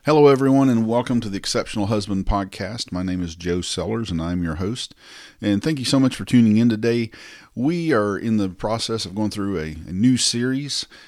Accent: American